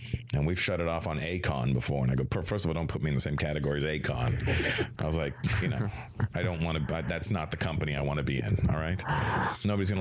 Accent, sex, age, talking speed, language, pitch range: American, male, 40-59, 270 wpm, English, 80-115 Hz